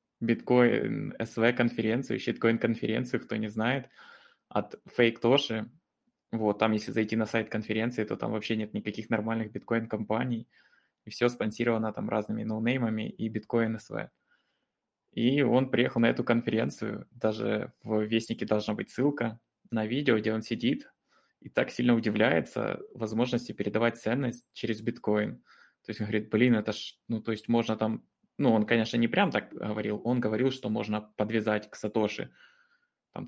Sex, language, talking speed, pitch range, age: male, Russian, 150 wpm, 110-120 Hz, 20-39